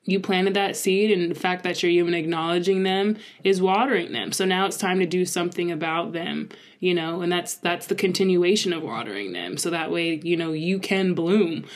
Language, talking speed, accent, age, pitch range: English, 215 wpm, American, 20-39, 165-185 Hz